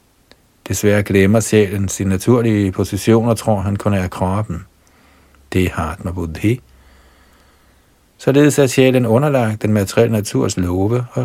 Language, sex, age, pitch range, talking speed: Danish, male, 60-79, 90-115 Hz, 150 wpm